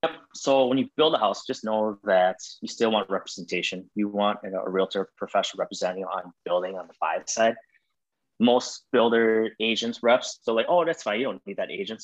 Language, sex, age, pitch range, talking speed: English, male, 20-39, 95-115 Hz, 215 wpm